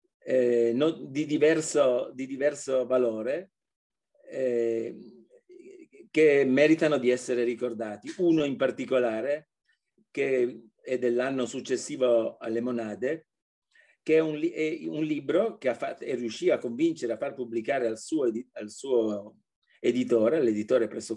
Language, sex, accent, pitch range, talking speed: Italian, male, native, 120-155 Hz, 120 wpm